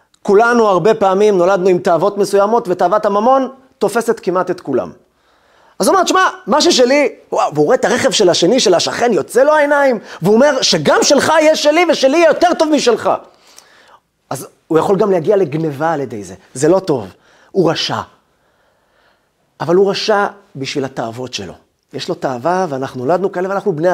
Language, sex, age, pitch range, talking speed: Hebrew, male, 30-49, 165-275 Hz, 175 wpm